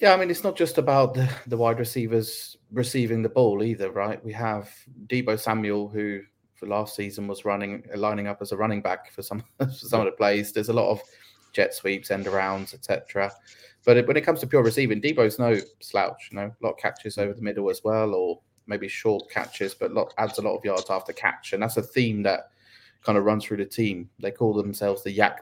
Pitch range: 100-120 Hz